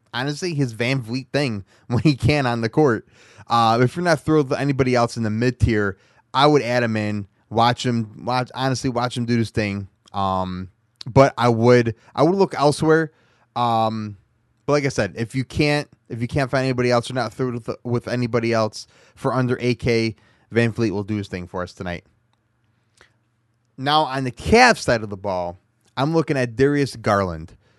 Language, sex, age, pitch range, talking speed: English, male, 20-39, 110-140 Hz, 195 wpm